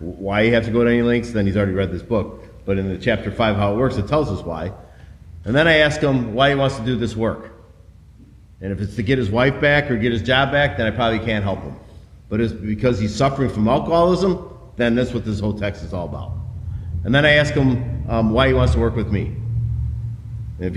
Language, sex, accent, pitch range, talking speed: English, male, American, 100-125 Hz, 255 wpm